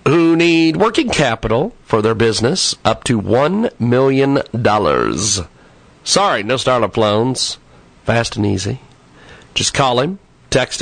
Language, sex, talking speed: English, male, 120 wpm